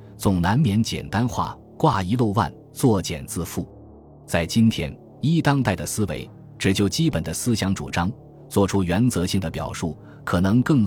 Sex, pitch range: male, 85-115 Hz